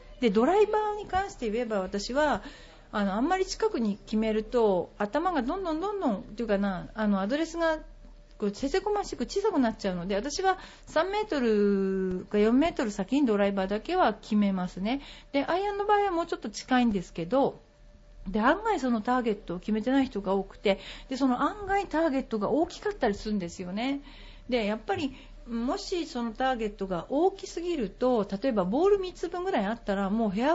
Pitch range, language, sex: 210-330 Hz, Japanese, female